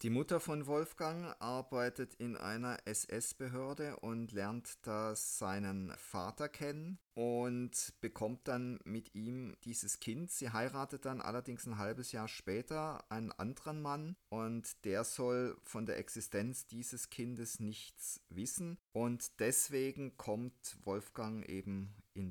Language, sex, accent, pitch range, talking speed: German, male, German, 105-130 Hz, 130 wpm